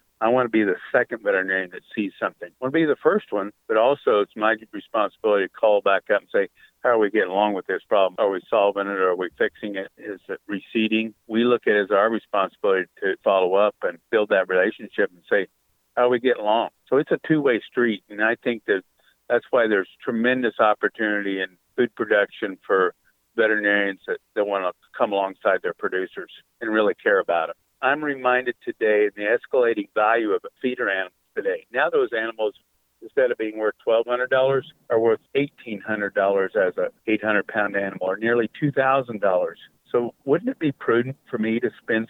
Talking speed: 200 wpm